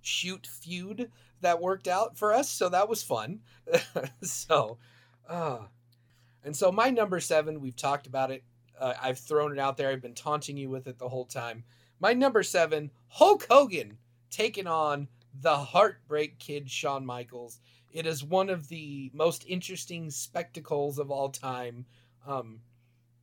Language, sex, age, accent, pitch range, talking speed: English, male, 30-49, American, 130-175 Hz, 160 wpm